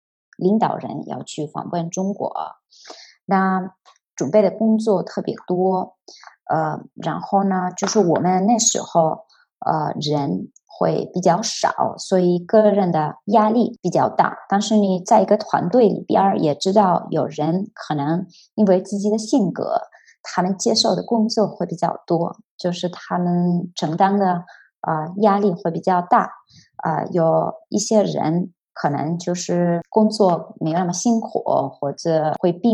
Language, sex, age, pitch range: Chinese, male, 20-39, 175-215 Hz